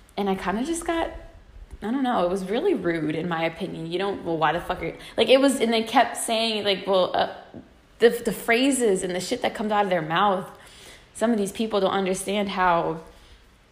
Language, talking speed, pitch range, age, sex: English, 230 wpm, 170-220 Hz, 20-39, female